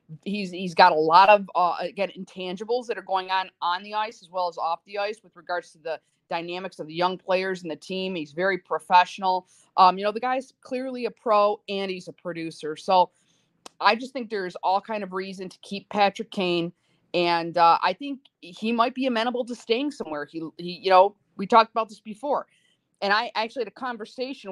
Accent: American